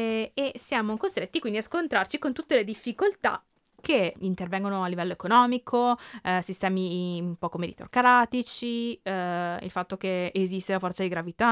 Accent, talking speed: native, 150 wpm